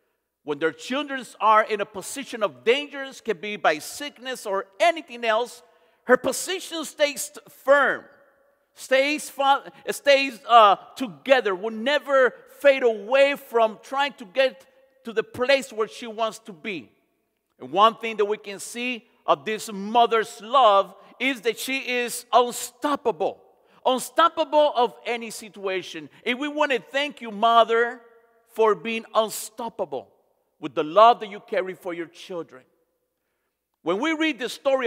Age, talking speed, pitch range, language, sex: 50-69, 145 wpm, 220-280 Hz, English, male